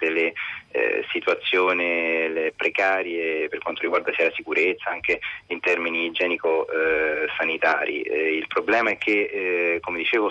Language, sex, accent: Italian, male, native